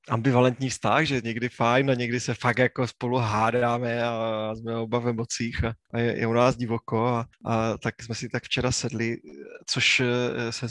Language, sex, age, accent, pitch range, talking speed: Czech, male, 20-39, native, 115-130 Hz, 185 wpm